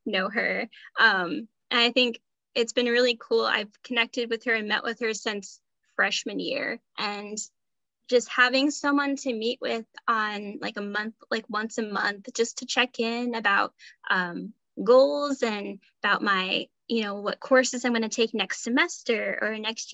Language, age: English, 10-29